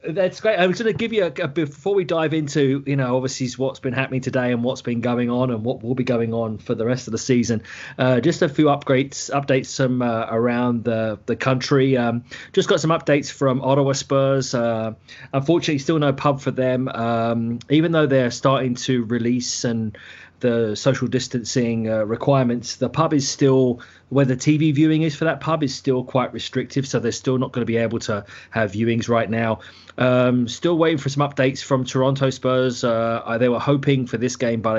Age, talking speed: 30-49, 210 wpm